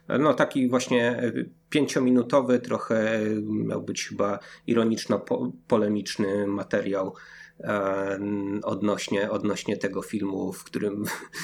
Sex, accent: male, native